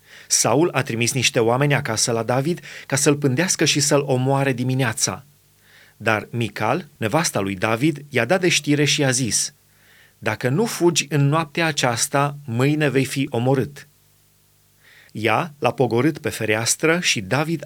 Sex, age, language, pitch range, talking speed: male, 30-49, Romanian, 120-155 Hz, 150 wpm